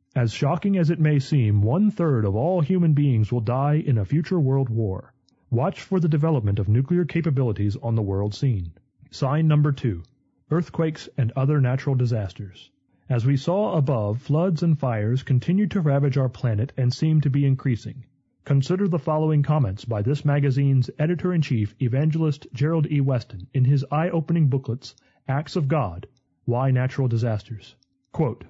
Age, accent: 30-49, American